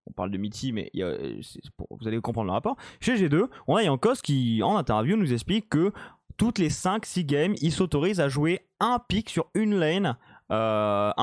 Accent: French